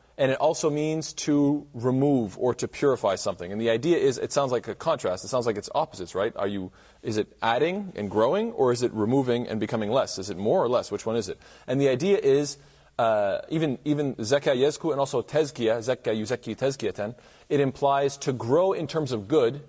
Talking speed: 210 wpm